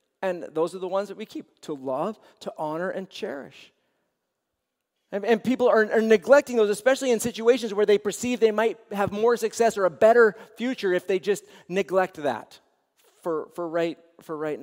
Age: 40-59